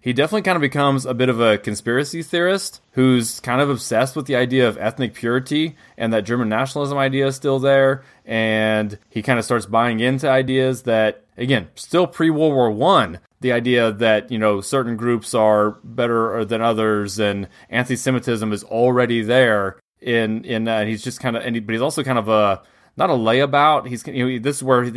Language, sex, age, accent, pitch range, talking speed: English, male, 20-39, American, 110-130 Hz, 195 wpm